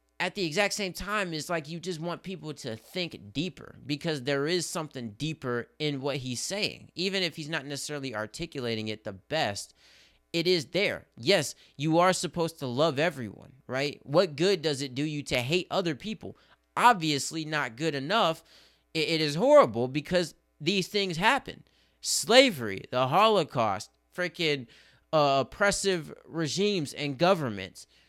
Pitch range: 120-175 Hz